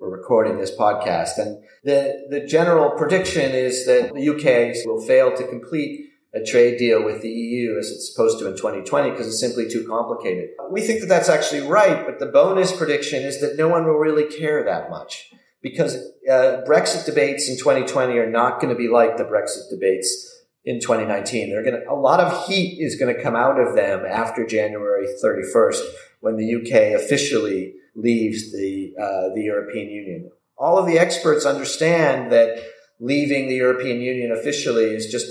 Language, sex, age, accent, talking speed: English, male, 40-59, American, 185 wpm